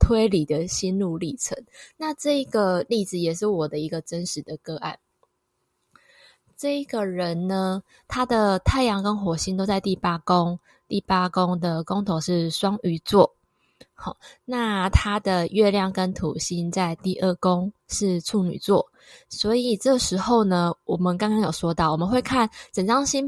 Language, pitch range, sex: Chinese, 175-220 Hz, female